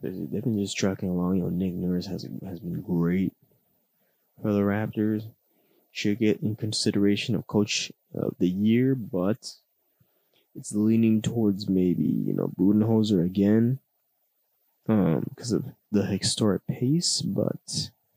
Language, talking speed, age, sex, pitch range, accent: English, 135 wpm, 20-39, male, 90-115 Hz, American